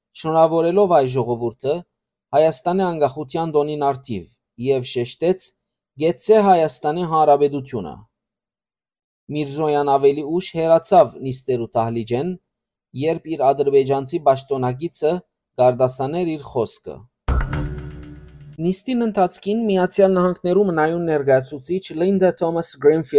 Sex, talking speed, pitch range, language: male, 75 wpm, 140-180 Hz, English